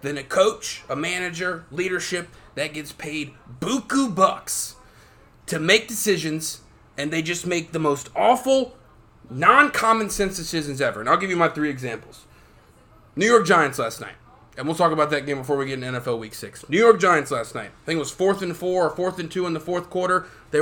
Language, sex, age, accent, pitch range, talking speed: English, male, 30-49, American, 150-205 Hz, 205 wpm